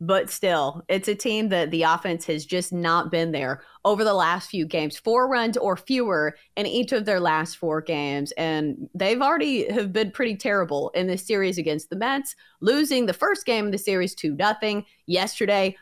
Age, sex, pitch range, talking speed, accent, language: 30-49, female, 165-235 Hz, 195 wpm, American, English